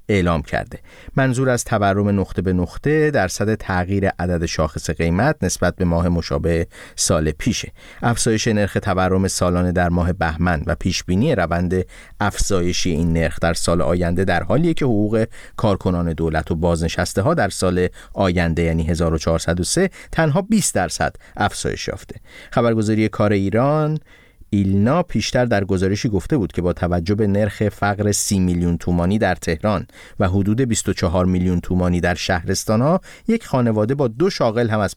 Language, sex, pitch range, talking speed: Persian, male, 90-120 Hz, 155 wpm